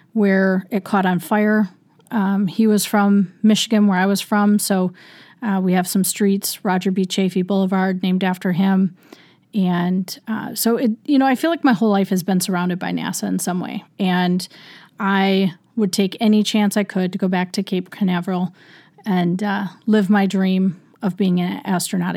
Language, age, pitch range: English, 30-49, 185-210 Hz